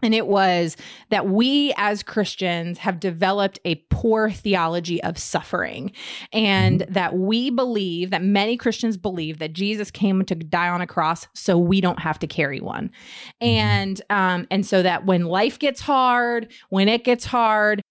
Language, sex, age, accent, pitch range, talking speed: English, female, 30-49, American, 175-225 Hz, 170 wpm